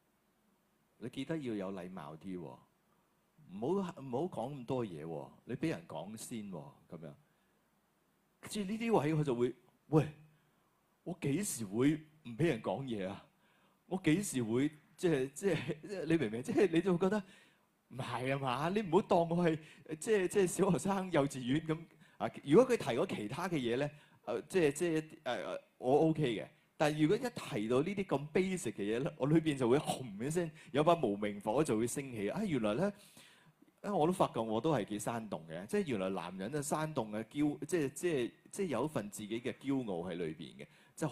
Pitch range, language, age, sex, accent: 120-180 Hz, Chinese, 30-49, male, native